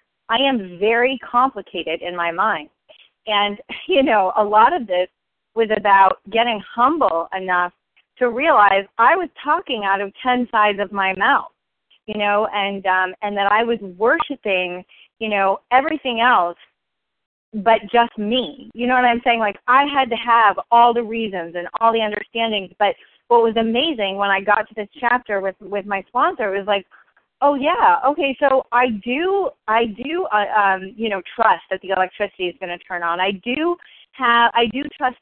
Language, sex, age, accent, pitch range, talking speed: English, female, 30-49, American, 200-255 Hz, 185 wpm